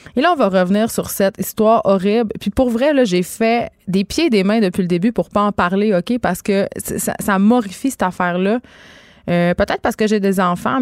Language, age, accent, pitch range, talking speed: French, 20-39, Canadian, 185-225 Hz, 235 wpm